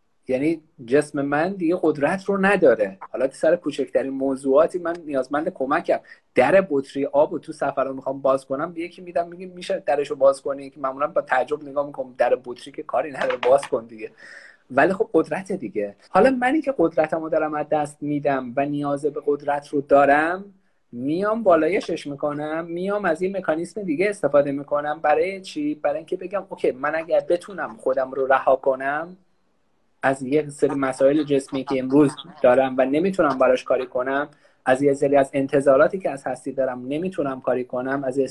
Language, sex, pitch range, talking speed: Persian, male, 140-180 Hz, 175 wpm